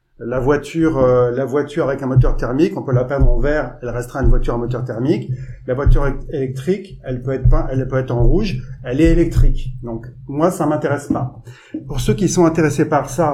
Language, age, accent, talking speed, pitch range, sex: French, 30-49, French, 225 wpm, 125-155 Hz, male